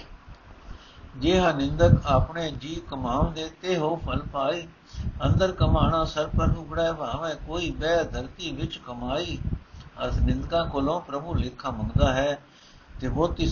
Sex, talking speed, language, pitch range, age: male, 135 wpm, Punjabi, 130-160 Hz, 60-79